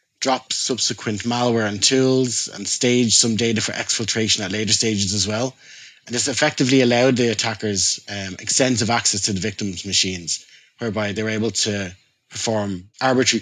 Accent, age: Irish, 20-39